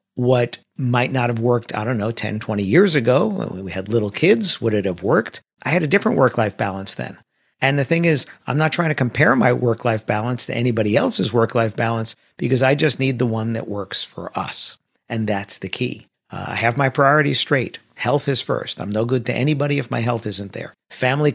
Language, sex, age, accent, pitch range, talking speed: English, male, 50-69, American, 115-140 Hz, 220 wpm